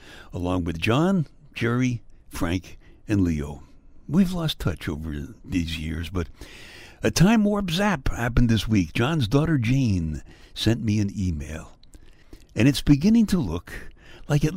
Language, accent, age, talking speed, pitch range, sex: English, American, 60-79, 145 wpm, 85-120 Hz, male